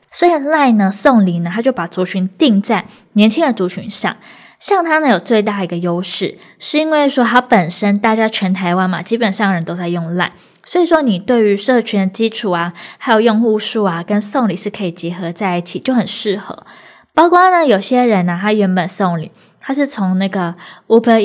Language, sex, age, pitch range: Chinese, female, 20-39, 180-235 Hz